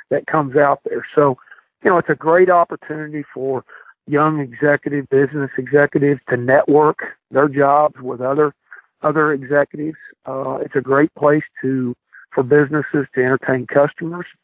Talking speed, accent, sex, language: 145 wpm, American, male, English